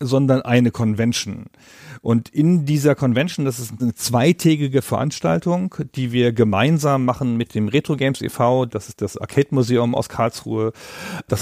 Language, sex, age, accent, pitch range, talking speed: German, male, 40-59, German, 115-135 Hz, 150 wpm